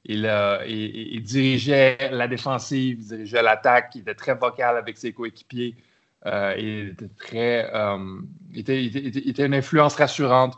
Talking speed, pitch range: 135 wpm, 115-140 Hz